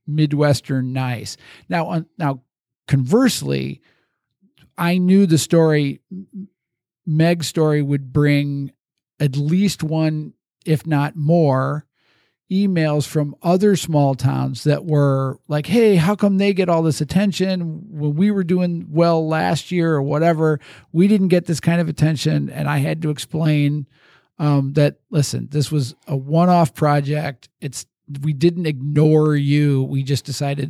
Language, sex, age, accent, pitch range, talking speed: English, male, 50-69, American, 140-165 Hz, 145 wpm